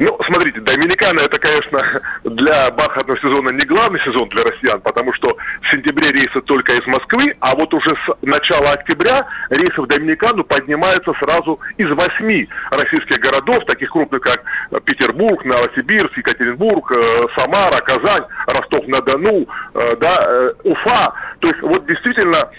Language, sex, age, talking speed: Russian, male, 30-49, 135 wpm